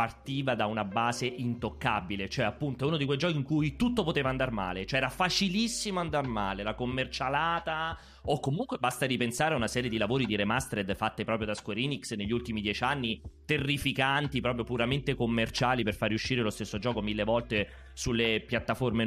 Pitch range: 110-150 Hz